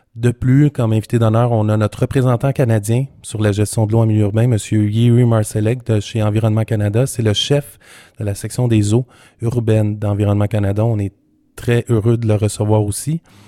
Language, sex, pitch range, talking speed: French, male, 105-125 Hz, 195 wpm